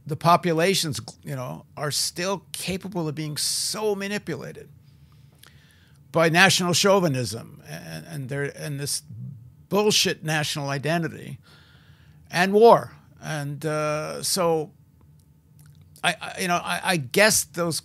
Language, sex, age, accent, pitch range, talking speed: English, male, 50-69, American, 140-190 Hz, 120 wpm